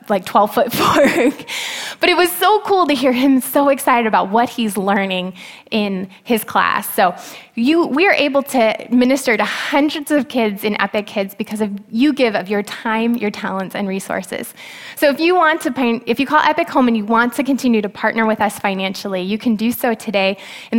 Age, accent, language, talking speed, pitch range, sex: 20-39, American, English, 210 wpm, 195-240 Hz, female